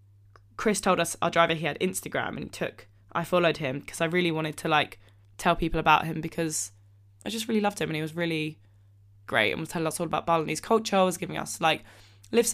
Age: 10-29